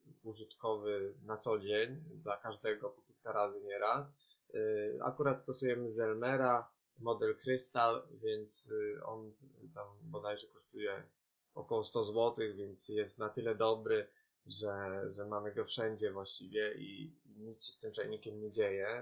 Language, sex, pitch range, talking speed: Polish, male, 110-145 Hz, 135 wpm